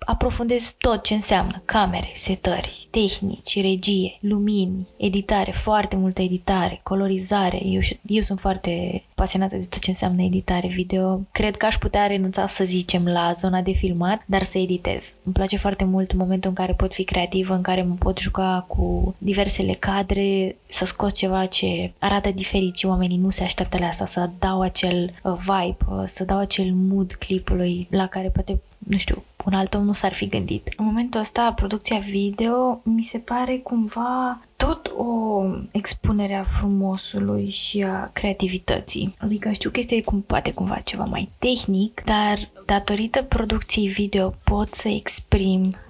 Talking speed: 165 wpm